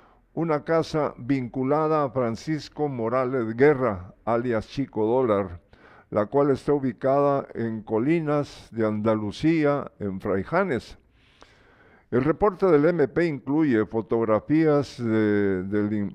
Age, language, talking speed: 50-69, Spanish, 100 wpm